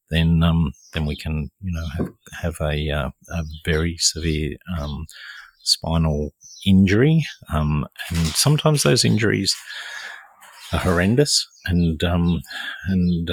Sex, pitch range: male, 80-95 Hz